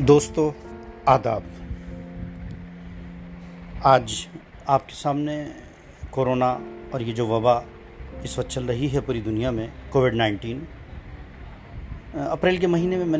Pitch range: 85-135 Hz